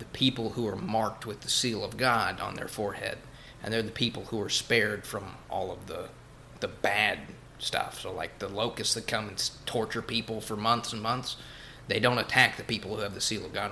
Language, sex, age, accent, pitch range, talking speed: English, male, 30-49, American, 110-130 Hz, 225 wpm